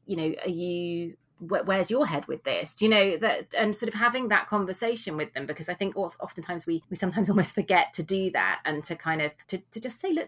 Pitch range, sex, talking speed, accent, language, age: 160-195 Hz, female, 245 wpm, British, English, 30-49